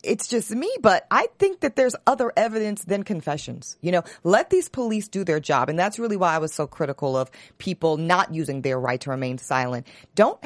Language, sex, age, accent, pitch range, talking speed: English, female, 40-59, American, 145-205 Hz, 220 wpm